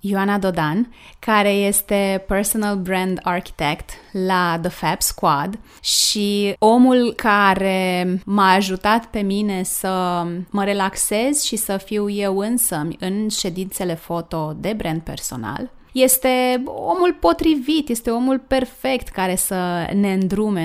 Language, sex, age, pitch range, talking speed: Romanian, female, 20-39, 190-235 Hz, 120 wpm